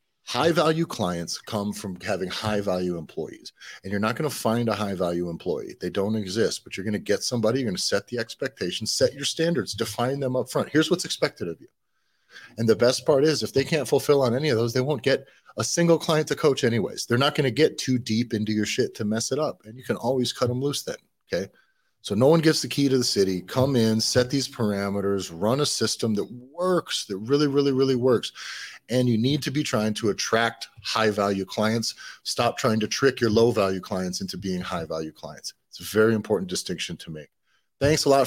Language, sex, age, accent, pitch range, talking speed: English, male, 40-59, American, 100-125 Hz, 225 wpm